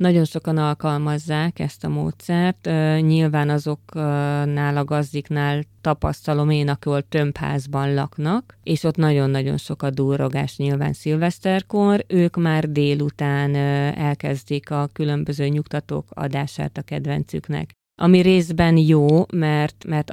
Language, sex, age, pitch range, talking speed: Hungarian, female, 30-49, 145-170 Hz, 115 wpm